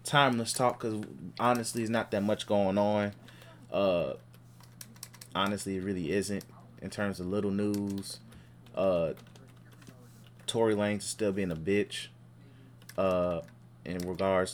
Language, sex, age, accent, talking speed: English, male, 20-39, American, 125 wpm